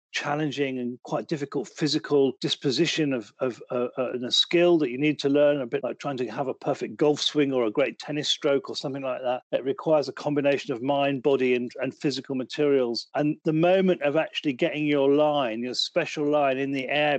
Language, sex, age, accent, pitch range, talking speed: English, male, 40-59, British, 130-150 Hz, 215 wpm